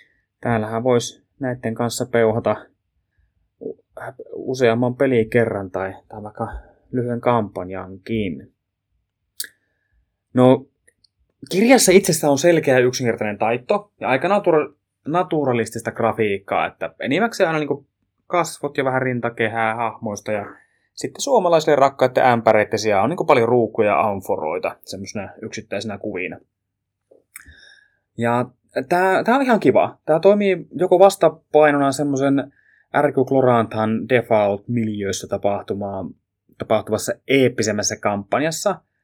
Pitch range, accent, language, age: 110-145 Hz, native, Finnish, 20-39